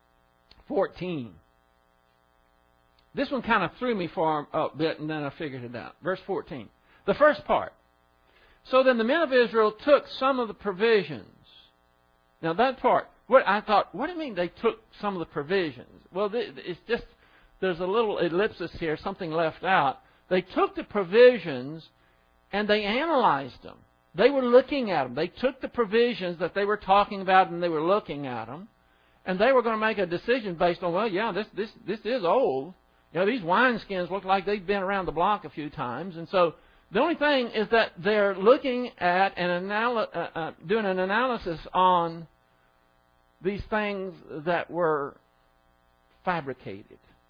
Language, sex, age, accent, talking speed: English, male, 60-79, American, 180 wpm